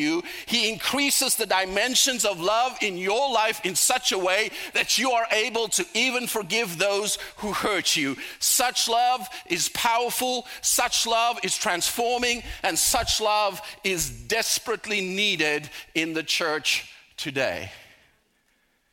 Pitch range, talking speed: 185-235 Hz, 135 wpm